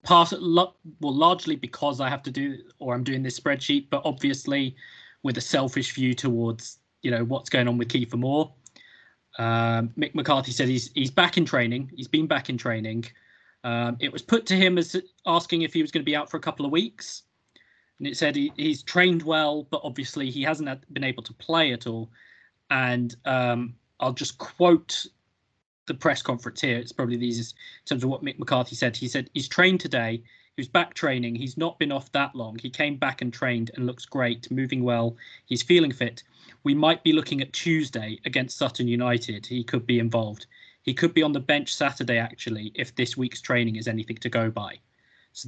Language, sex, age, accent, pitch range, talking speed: English, male, 20-39, British, 120-150 Hz, 205 wpm